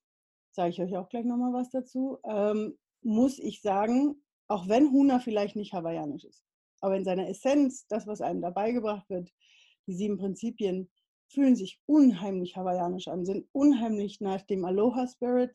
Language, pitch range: German, 195-245 Hz